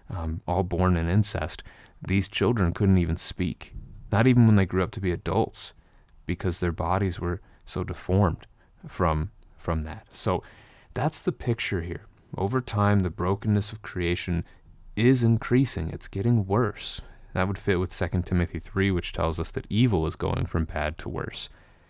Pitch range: 85-105 Hz